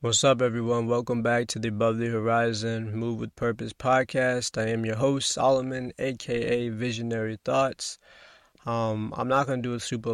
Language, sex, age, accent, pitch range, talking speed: English, male, 20-39, American, 110-125 Hz, 180 wpm